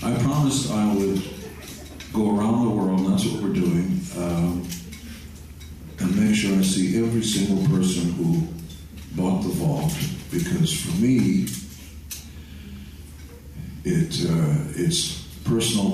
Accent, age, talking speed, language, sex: American, 60-79, 125 wpm, English, male